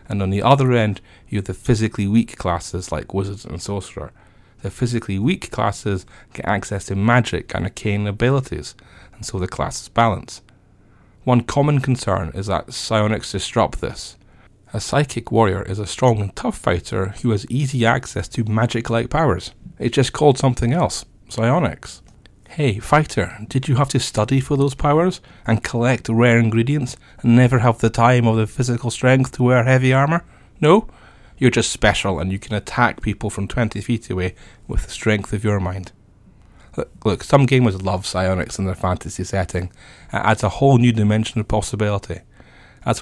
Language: English